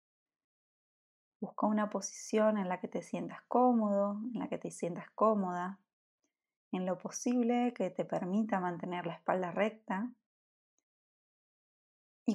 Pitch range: 200-240 Hz